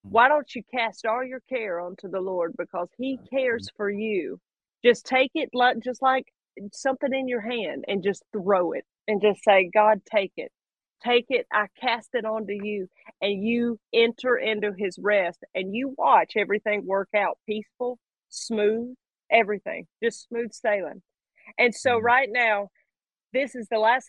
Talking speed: 165 wpm